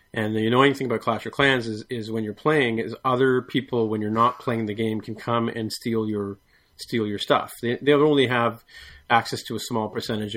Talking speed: 225 wpm